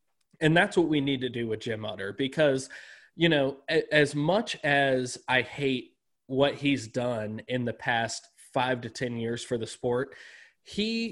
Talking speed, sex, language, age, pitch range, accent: 175 wpm, male, English, 20-39, 125-155 Hz, American